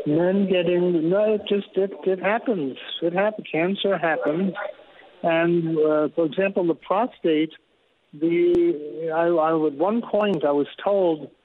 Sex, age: male, 60-79